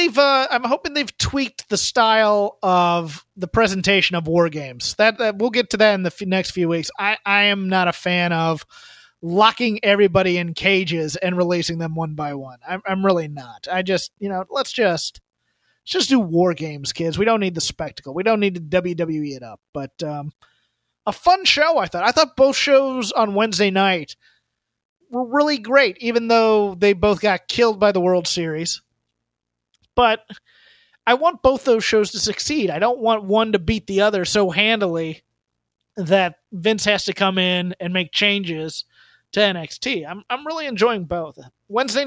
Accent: American